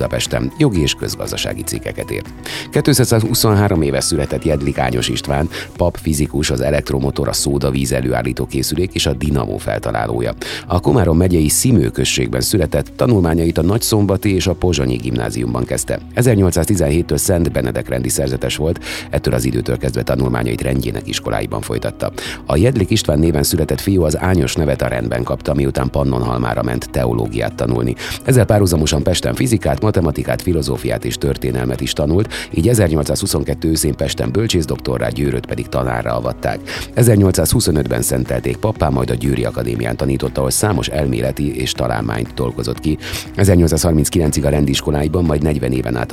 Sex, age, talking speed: male, 30-49, 140 wpm